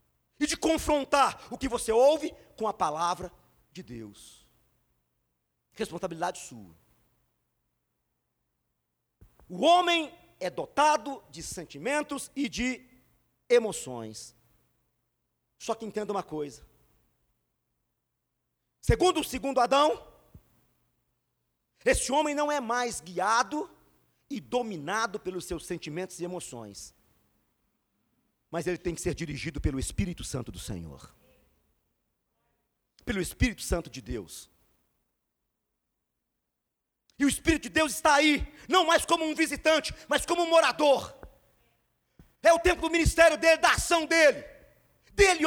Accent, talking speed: Brazilian, 115 wpm